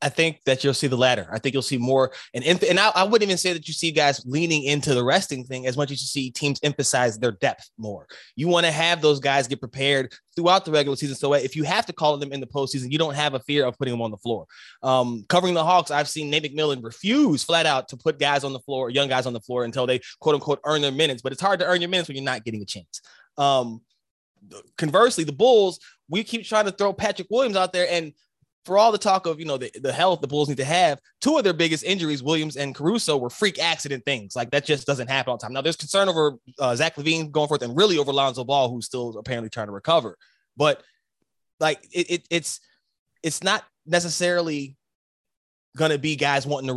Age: 20-39